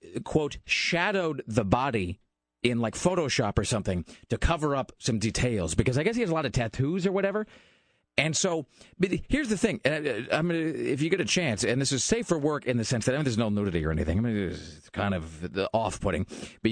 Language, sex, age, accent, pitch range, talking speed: English, male, 40-59, American, 105-150 Hz, 230 wpm